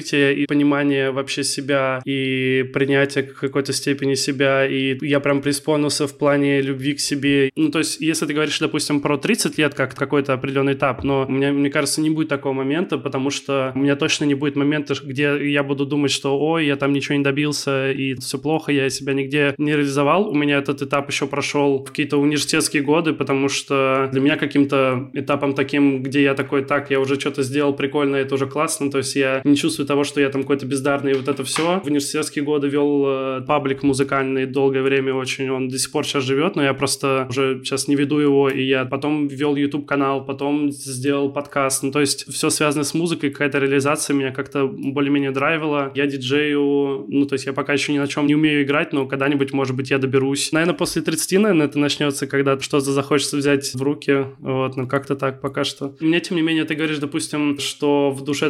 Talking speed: 210 wpm